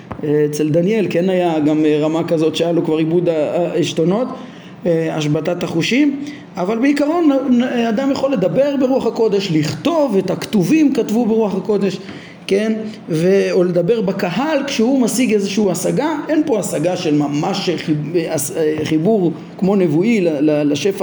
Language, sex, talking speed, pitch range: Hebrew, male, 125 wpm, 160-220 Hz